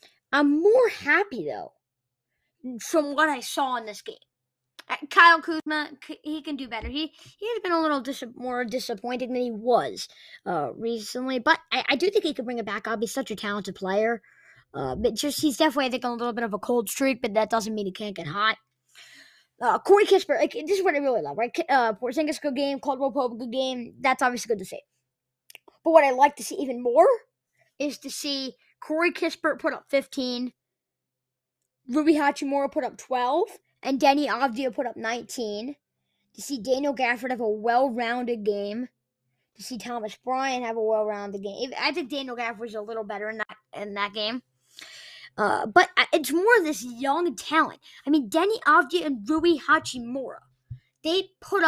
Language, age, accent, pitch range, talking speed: English, 20-39, American, 220-300 Hz, 195 wpm